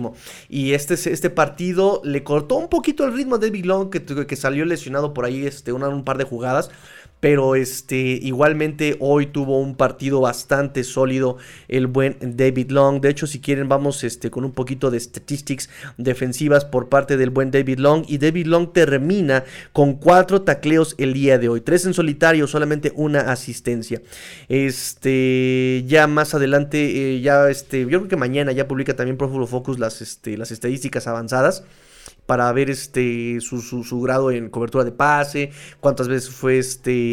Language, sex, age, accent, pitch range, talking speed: Spanish, male, 30-49, Mexican, 125-145 Hz, 175 wpm